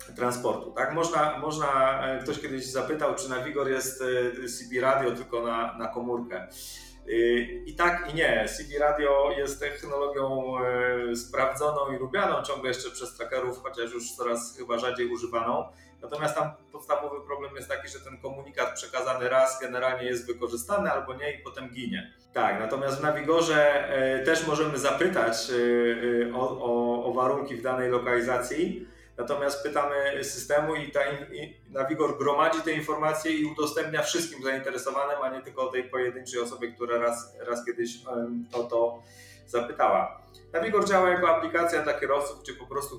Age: 30-49